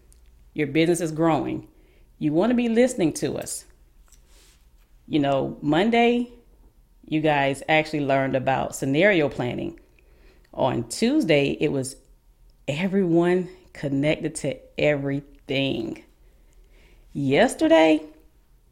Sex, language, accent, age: female, English, American, 40-59